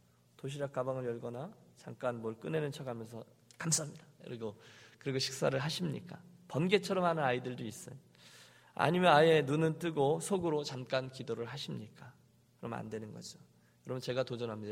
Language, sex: Korean, male